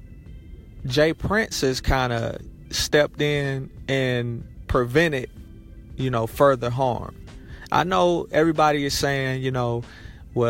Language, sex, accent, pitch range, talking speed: English, male, American, 115-140 Hz, 120 wpm